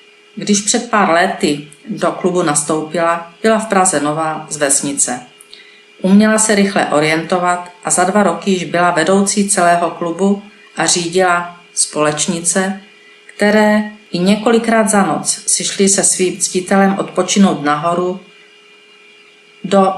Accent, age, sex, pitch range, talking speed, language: native, 40-59, female, 165-200 Hz, 125 wpm, Czech